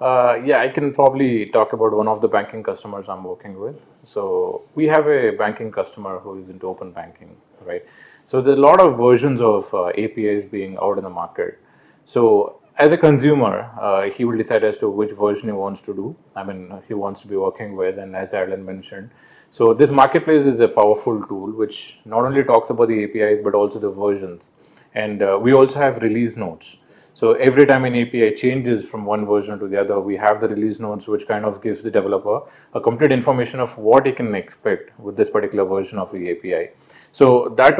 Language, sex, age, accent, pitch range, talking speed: English, male, 30-49, Indian, 105-155 Hz, 215 wpm